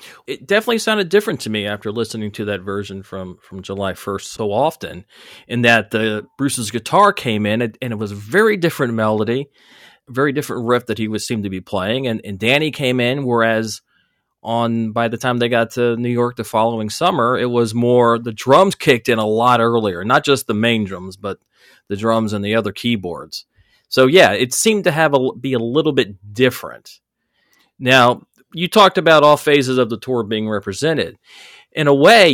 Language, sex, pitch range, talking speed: English, male, 105-130 Hz, 200 wpm